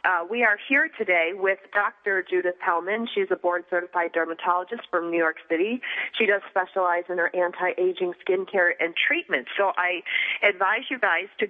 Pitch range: 180-220 Hz